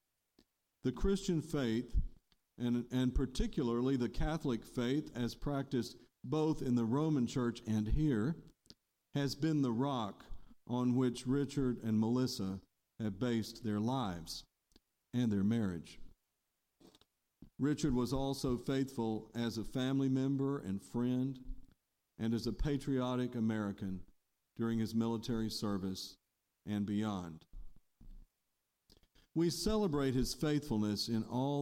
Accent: American